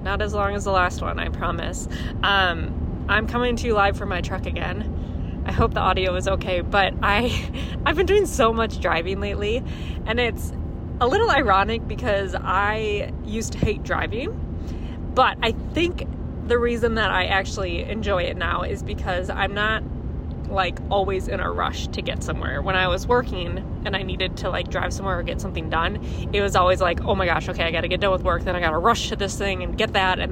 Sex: female